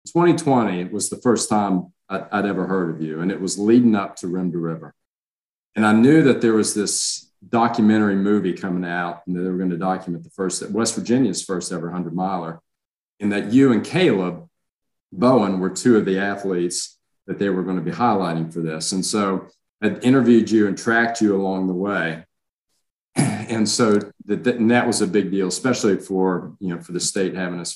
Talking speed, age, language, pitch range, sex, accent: 200 wpm, 40-59, English, 90-105 Hz, male, American